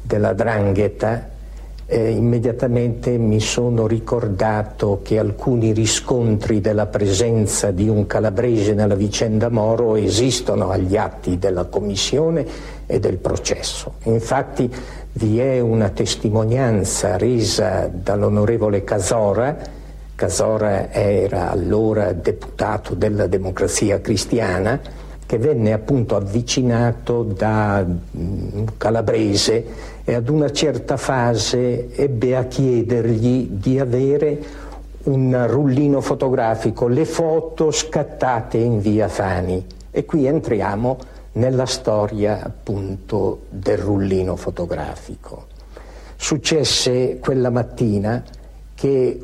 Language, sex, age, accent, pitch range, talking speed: Italian, male, 60-79, native, 105-130 Hz, 95 wpm